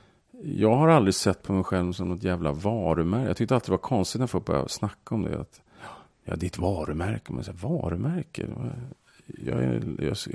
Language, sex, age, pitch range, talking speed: English, male, 40-59, 95-125 Hz, 215 wpm